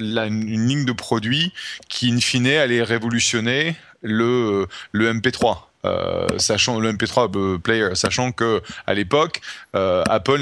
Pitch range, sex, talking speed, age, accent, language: 105-125 Hz, male, 145 wpm, 30-49, French, French